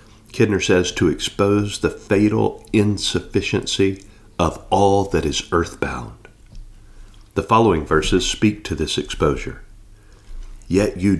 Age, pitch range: 40-59, 95-110 Hz